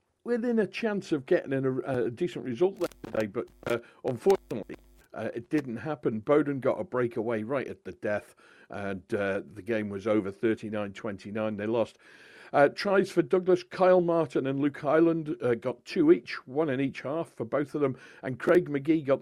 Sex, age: male, 60-79